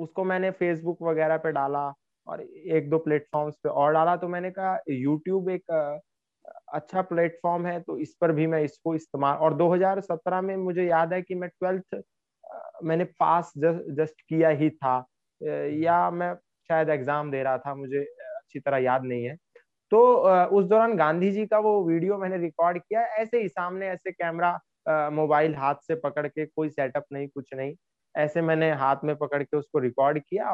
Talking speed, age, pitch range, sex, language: 180 wpm, 20-39, 150-190 Hz, male, Gujarati